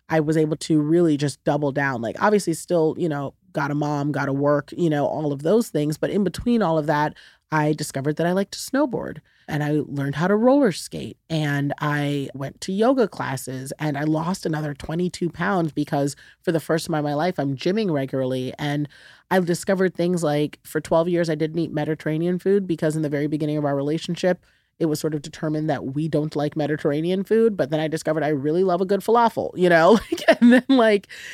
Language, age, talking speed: English, 30-49, 220 wpm